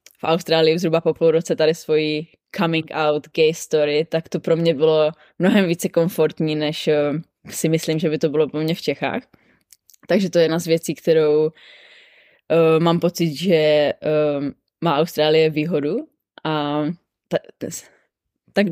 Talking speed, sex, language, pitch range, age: 155 wpm, female, Czech, 155-175 Hz, 20-39